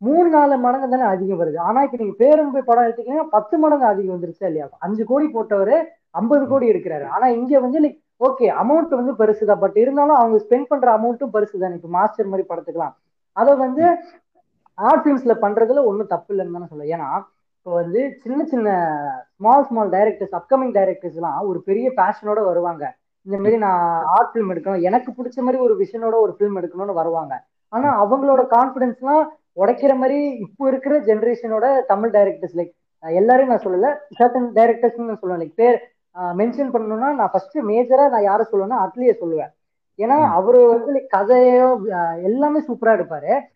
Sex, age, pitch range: female, 20-39, 195-275 Hz